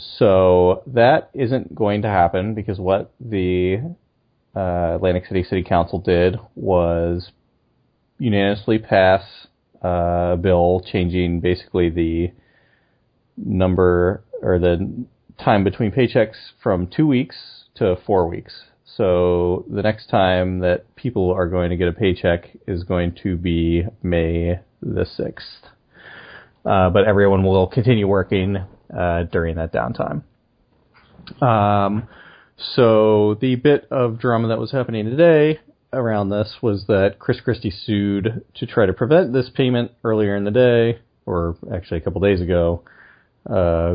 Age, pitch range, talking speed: 30-49, 90-110 Hz, 135 wpm